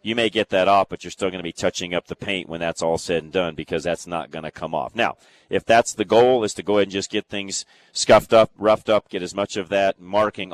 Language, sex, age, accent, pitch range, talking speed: English, male, 40-59, American, 85-105 Hz, 290 wpm